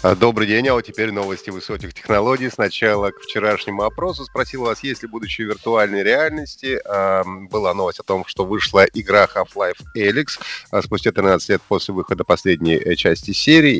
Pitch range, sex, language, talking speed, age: 105-150 Hz, male, Russian, 160 wpm, 30-49